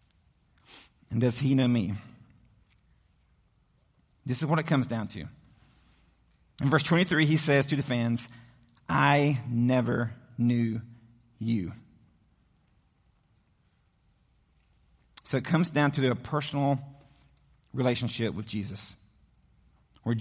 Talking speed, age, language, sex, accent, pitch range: 105 wpm, 40-59, English, male, American, 115-145 Hz